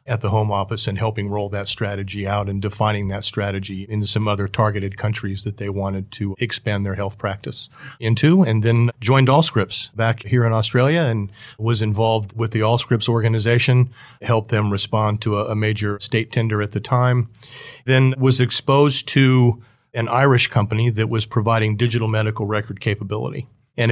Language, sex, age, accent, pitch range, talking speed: English, male, 50-69, American, 105-115 Hz, 175 wpm